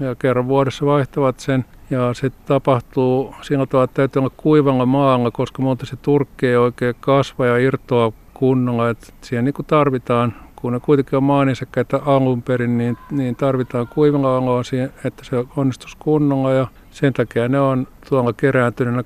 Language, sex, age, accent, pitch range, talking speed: Finnish, male, 50-69, native, 120-135 Hz, 170 wpm